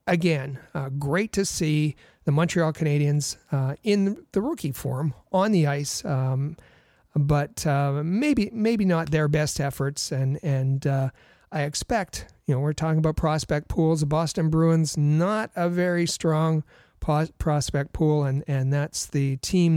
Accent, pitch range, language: American, 140-165 Hz, English